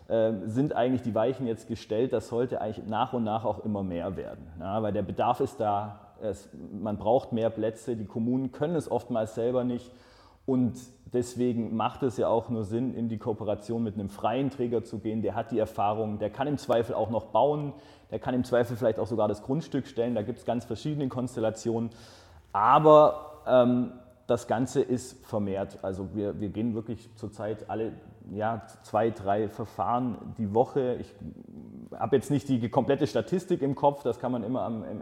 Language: German